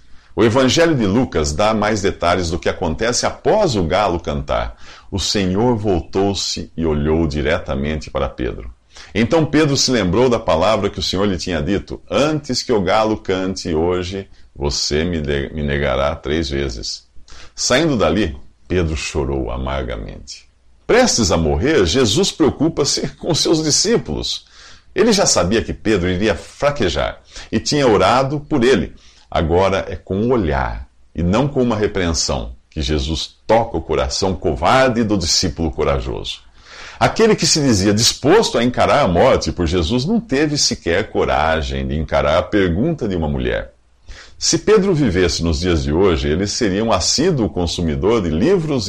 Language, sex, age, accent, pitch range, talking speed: Portuguese, male, 50-69, Brazilian, 75-110 Hz, 155 wpm